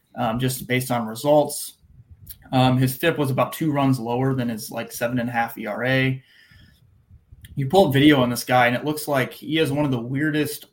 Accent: American